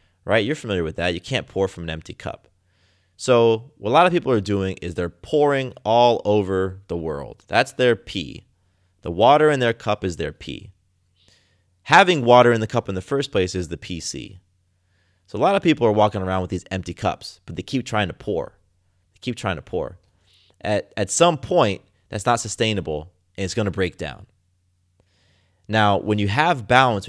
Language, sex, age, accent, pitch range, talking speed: English, male, 30-49, American, 90-120 Hz, 200 wpm